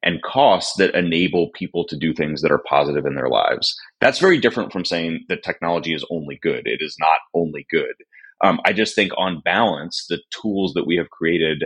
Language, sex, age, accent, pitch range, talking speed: English, male, 30-49, American, 80-95 Hz, 210 wpm